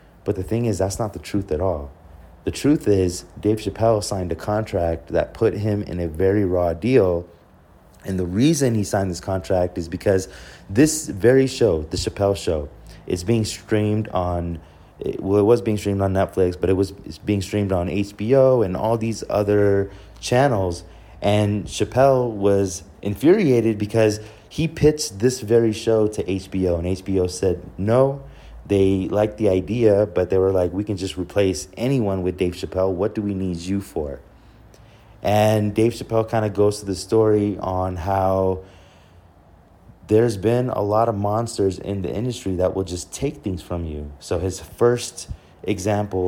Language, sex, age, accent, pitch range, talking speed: English, male, 30-49, American, 90-110 Hz, 175 wpm